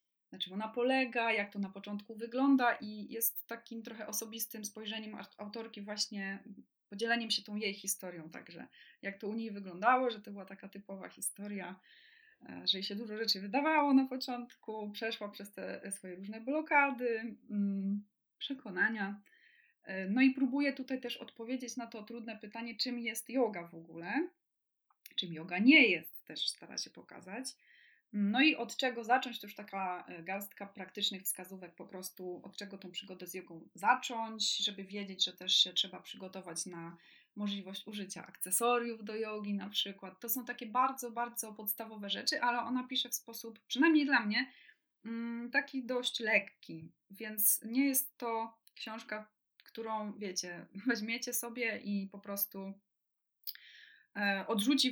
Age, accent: 20-39, native